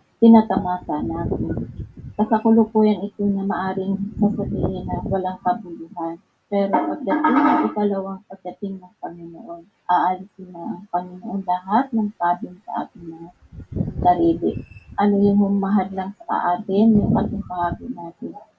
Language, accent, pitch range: Filipino, native, 180-215 Hz